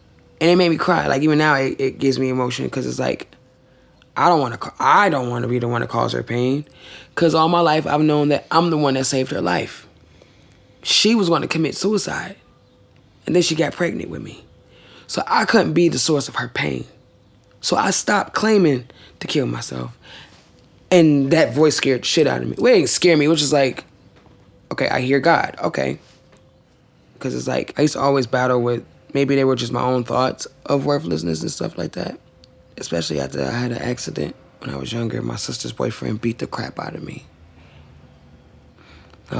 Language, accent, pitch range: English, American, 115-145 Hz